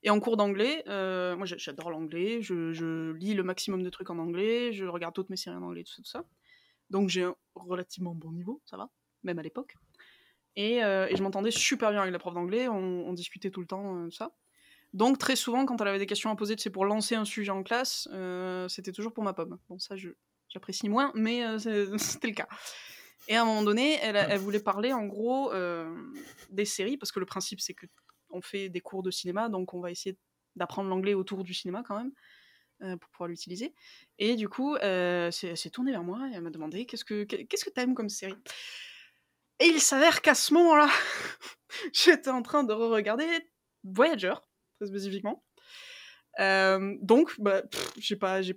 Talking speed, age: 215 wpm, 20-39